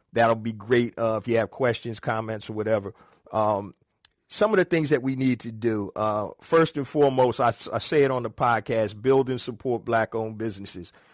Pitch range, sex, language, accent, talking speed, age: 115-135 Hz, male, English, American, 200 wpm, 50-69